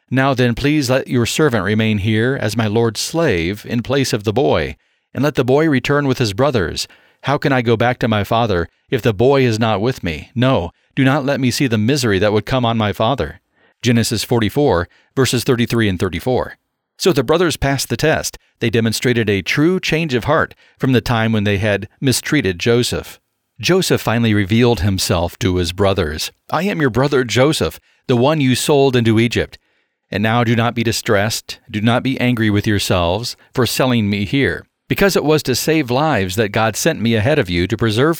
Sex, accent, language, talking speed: male, American, English, 205 wpm